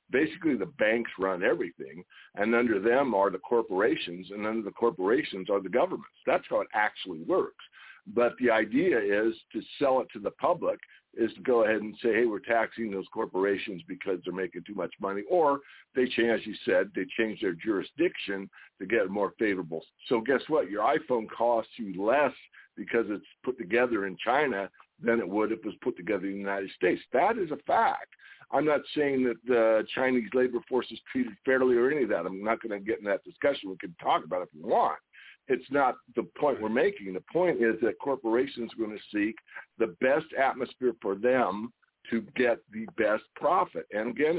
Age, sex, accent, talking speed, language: 60-79, male, American, 205 wpm, English